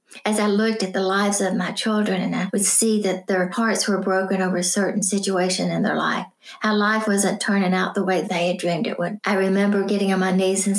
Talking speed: 245 wpm